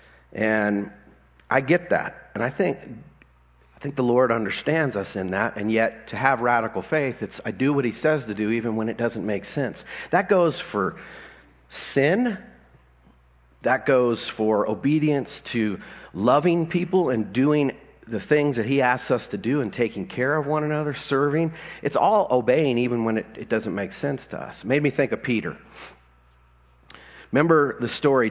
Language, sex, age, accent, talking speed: English, male, 40-59, American, 180 wpm